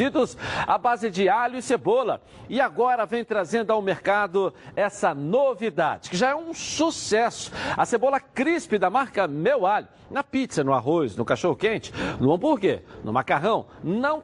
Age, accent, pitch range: 60-79, Brazilian, 170-245 Hz